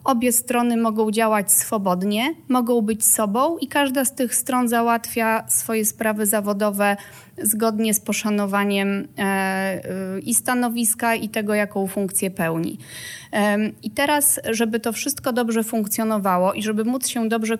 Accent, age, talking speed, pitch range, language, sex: native, 30-49, 135 wpm, 205-245 Hz, Polish, female